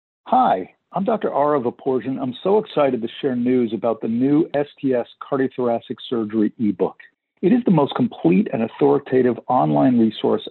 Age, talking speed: 50-69, 155 wpm